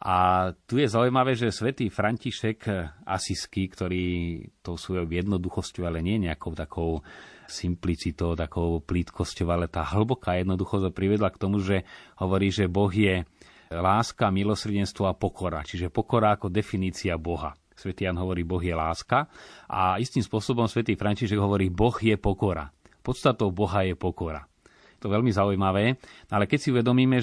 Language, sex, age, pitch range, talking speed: Slovak, male, 30-49, 90-120 Hz, 150 wpm